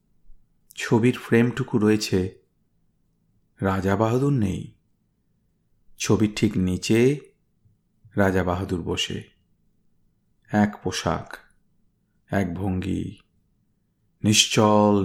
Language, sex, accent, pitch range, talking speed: Bengali, male, native, 100-120 Hz, 65 wpm